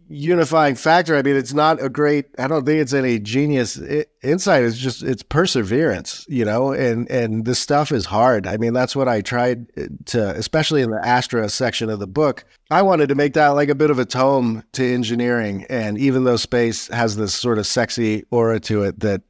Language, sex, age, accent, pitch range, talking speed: English, male, 30-49, American, 110-135 Hz, 210 wpm